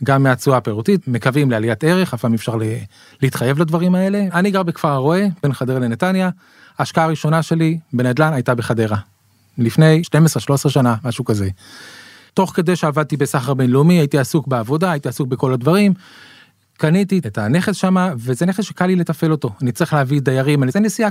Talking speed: 175 wpm